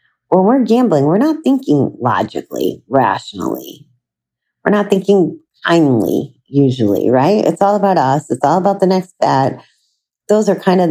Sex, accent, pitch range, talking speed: female, American, 130-165 Hz, 155 wpm